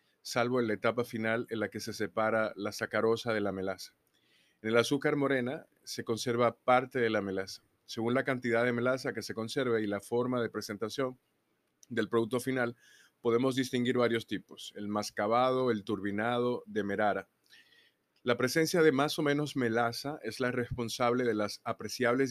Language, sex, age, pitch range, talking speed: Spanish, male, 30-49, 110-130 Hz, 170 wpm